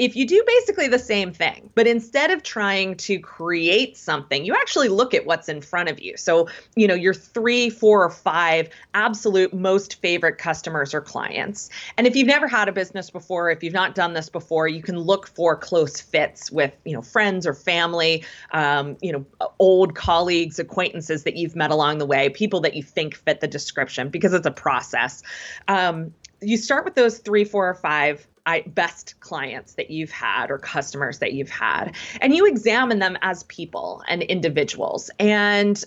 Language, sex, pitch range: English, female, 165-215 Hz